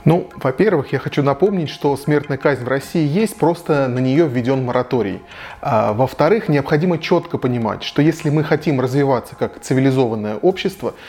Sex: male